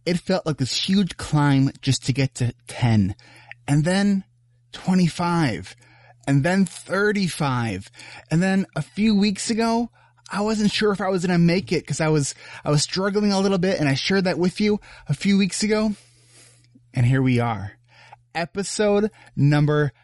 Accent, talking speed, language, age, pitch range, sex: American, 175 wpm, English, 20-39, 120-175 Hz, male